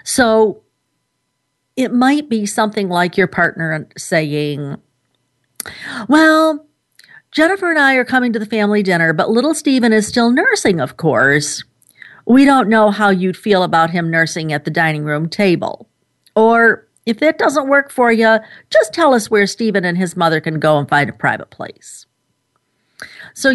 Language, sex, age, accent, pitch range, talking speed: English, female, 50-69, American, 165-230 Hz, 165 wpm